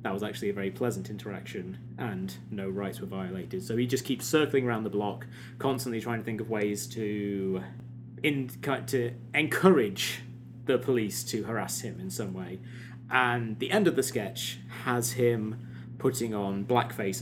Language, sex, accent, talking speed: English, male, British, 170 wpm